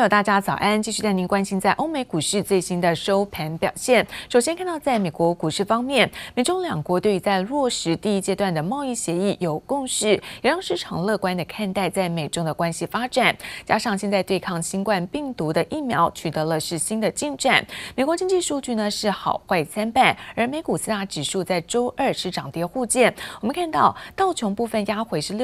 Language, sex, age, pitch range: Chinese, female, 20-39, 180-240 Hz